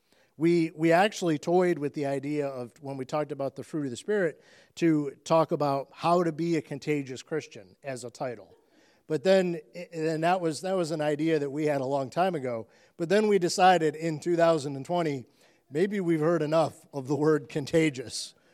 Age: 50-69